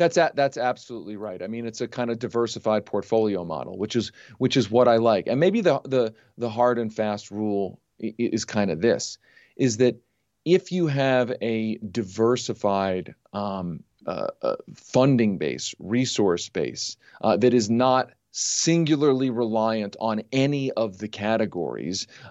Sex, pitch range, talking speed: male, 110-140 Hz, 160 wpm